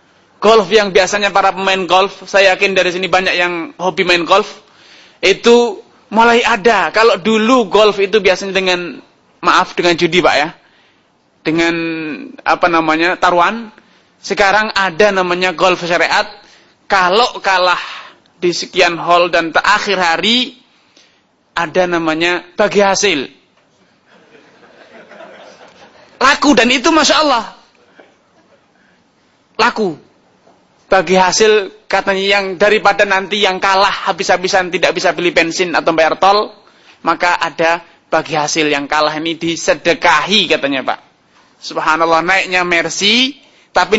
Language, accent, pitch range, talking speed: Indonesian, native, 175-210 Hz, 115 wpm